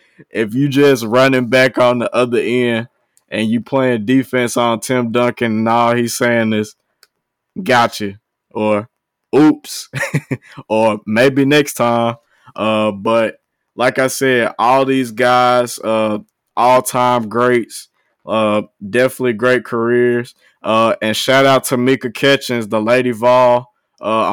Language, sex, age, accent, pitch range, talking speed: English, male, 20-39, American, 110-125 Hz, 135 wpm